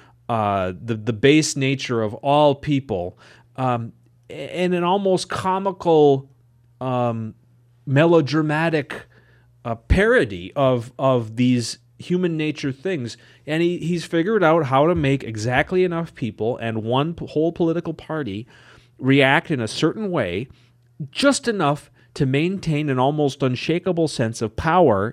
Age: 30-49